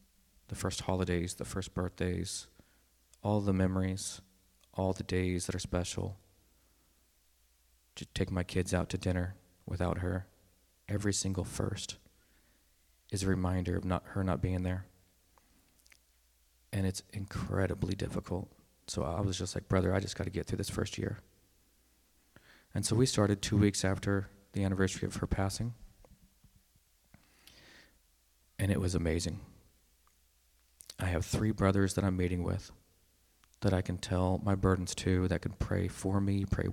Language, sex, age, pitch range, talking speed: English, male, 30-49, 85-100 Hz, 150 wpm